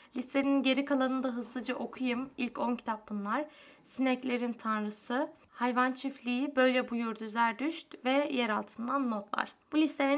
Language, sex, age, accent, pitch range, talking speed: Turkish, female, 10-29, native, 240-290 Hz, 130 wpm